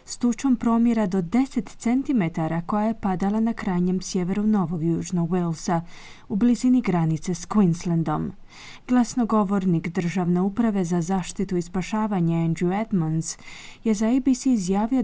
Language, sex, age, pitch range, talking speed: Croatian, female, 30-49, 180-230 Hz, 130 wpm